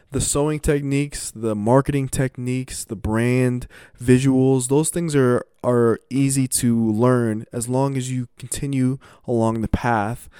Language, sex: English, male